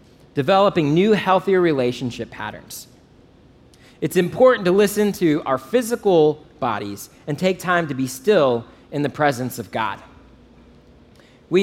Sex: male